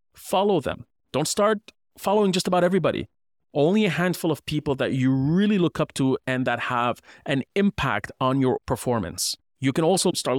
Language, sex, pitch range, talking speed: English, male, 120-155 Hz, 180 wpm